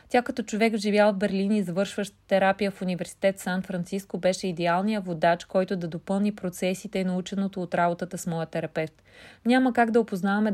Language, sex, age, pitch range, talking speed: Bulgarian, female, 30-49, 185-215 Hz, 170 wpm